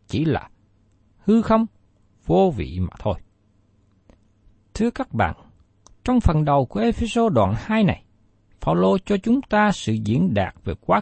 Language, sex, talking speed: Vietnamese, male, 150 wpm